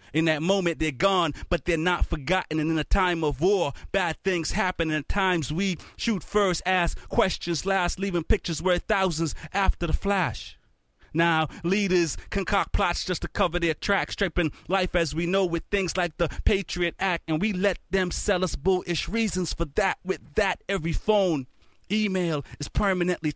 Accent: American